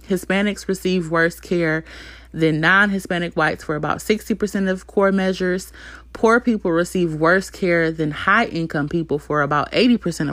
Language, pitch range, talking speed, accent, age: English, 155-195 Hz, 140 wpm, American, 30-49